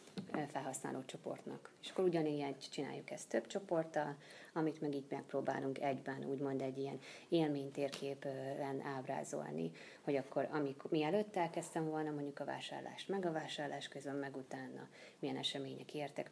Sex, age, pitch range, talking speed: female, 30-49, 140-170 Hz, 135 wpm